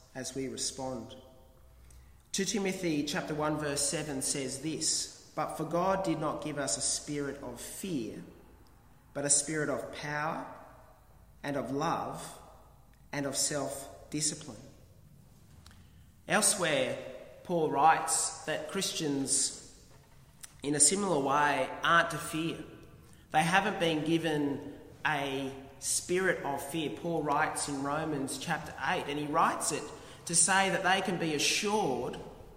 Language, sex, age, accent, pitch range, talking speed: English, male, 30-49, Australian, 135-165 Hz, 130 wpm